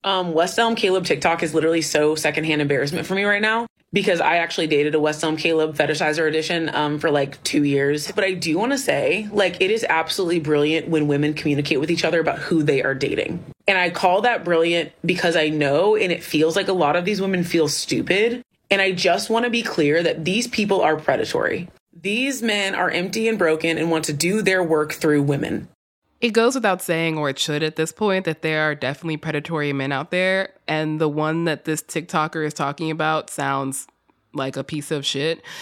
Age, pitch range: 20-39, 150-190 Hz